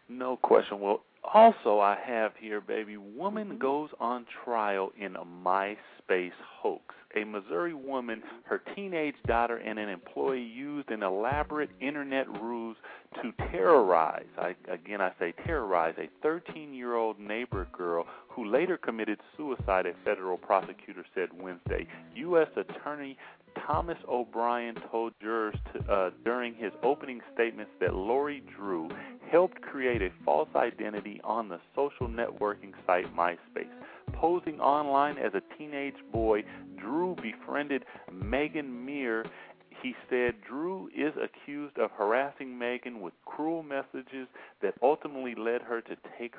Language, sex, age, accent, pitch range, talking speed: English, male, 40-59, American, 105-140 Hz, 130 wpm